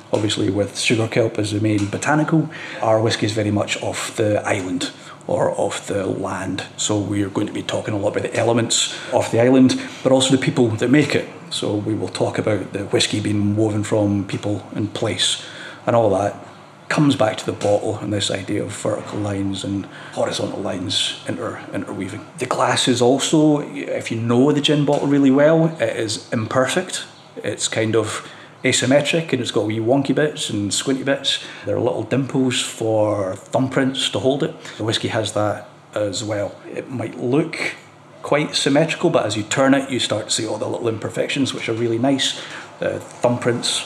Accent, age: British, 30-49